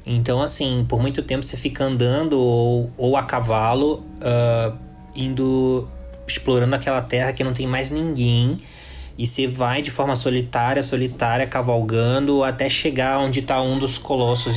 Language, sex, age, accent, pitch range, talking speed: Portuguese, male, 20-39, Brazilian, 115-135 Hz, 150 wpm